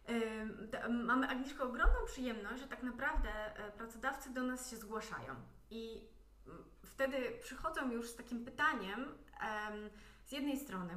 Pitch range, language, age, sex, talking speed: 210-270 Hz, Polish, 30-49, female, 120 wpm